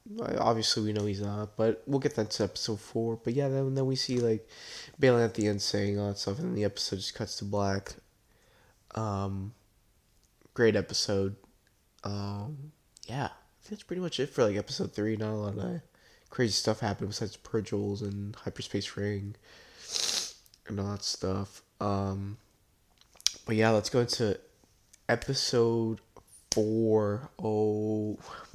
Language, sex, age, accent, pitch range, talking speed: English, male, 20-39, American, 100-125 Hz, 155 wpm